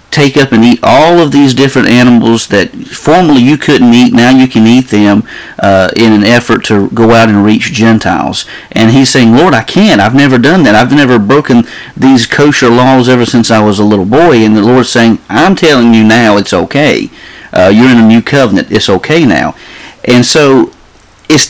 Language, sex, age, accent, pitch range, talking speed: English, male, 40-59, American, 105-125 Hz, 205 wpm